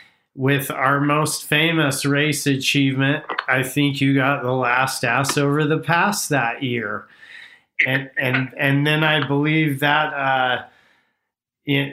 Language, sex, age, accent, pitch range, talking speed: English, male, 40-59, American, 135-160 Hz, 135 wpm